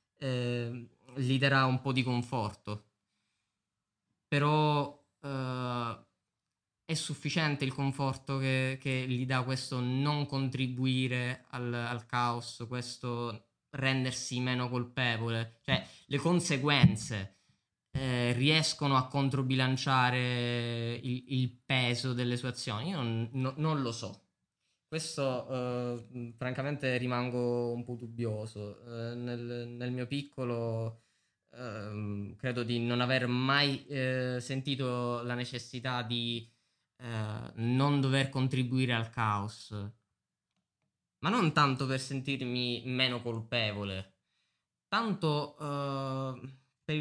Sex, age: male, 20-39